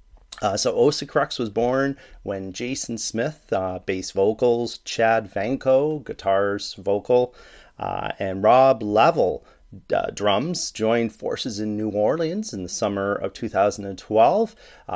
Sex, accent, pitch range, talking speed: male, American, 95-115 Hz, 130 wpm